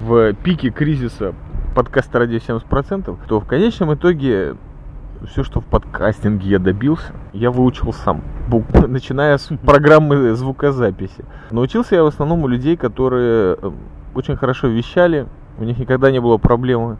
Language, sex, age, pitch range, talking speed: Russian, male, 20-39, 115-150 Hz, 140 wpm